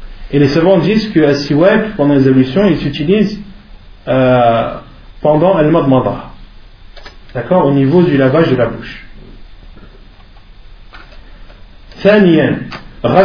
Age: 40-59